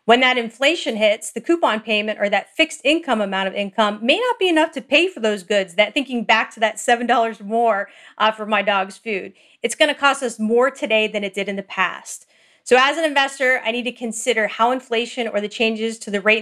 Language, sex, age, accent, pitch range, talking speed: English, female, 40-59, American, 205-260 Hz, 235 wpm